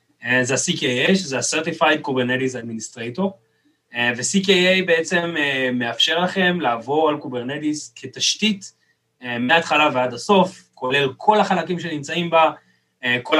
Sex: male